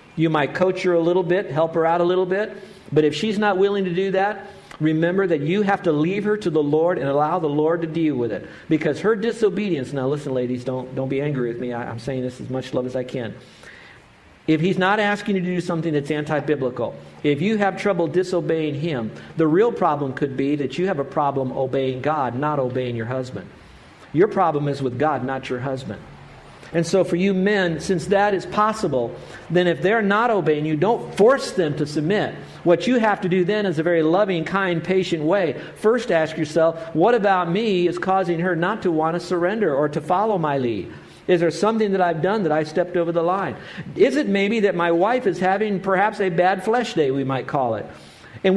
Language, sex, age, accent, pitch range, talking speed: English, male, 50-69, American, 150-195 Hz, 225 wpm